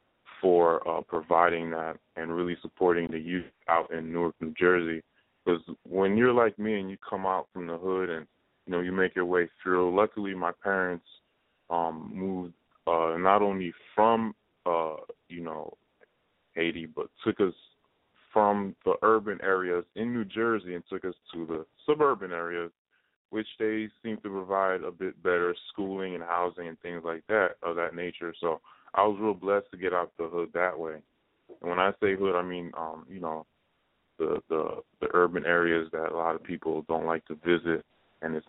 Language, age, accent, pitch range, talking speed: English, 20-39, American, 80-95 Hz, 190 wpm